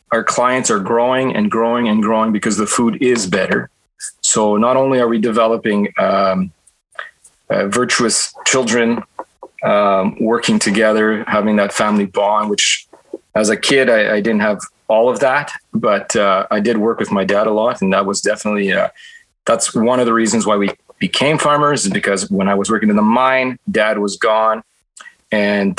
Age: 30-49